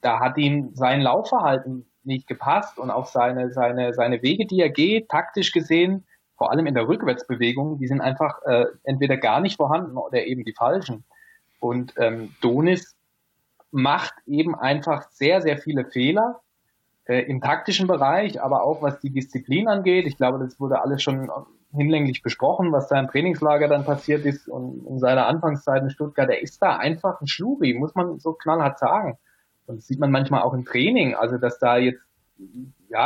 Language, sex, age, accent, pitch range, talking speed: German, male, 20-39, German, 125-160 Hz, 180 wpm